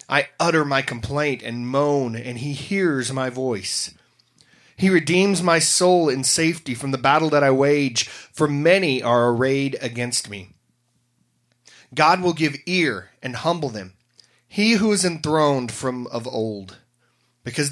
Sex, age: male, 30-49